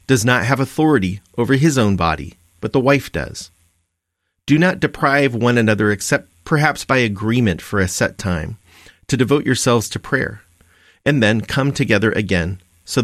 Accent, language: American, English